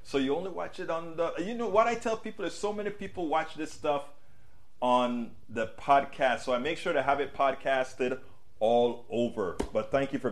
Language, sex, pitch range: English, male, 120-175 Hz